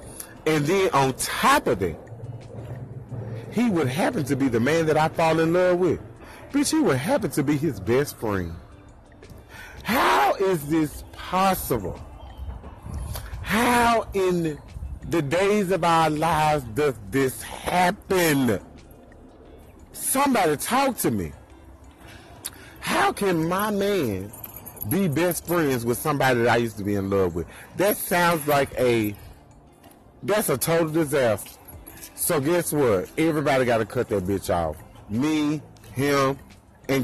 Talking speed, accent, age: 135 wpm, American, 40-59